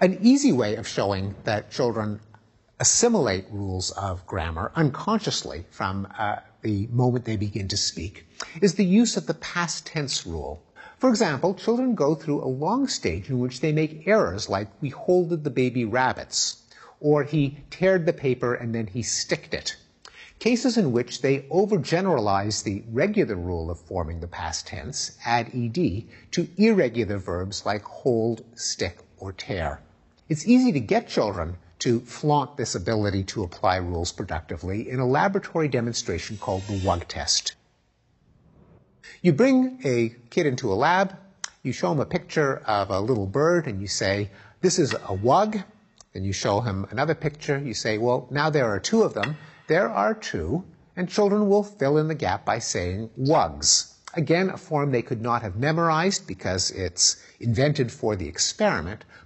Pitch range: 100-170 Hz